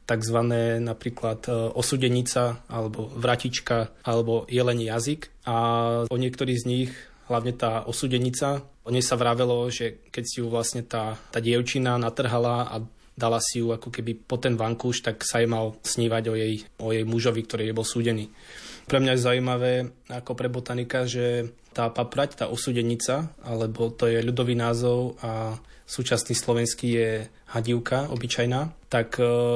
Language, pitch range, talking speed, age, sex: Slovak, 115-125 Hz, 150 wpm, 20-39, male